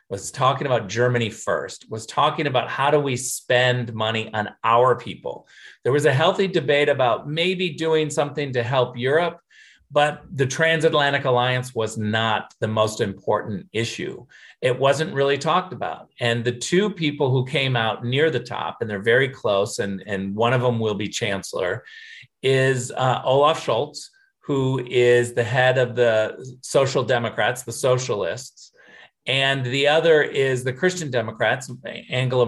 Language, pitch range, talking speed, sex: English, 120-150 Hz, 160 wpm, male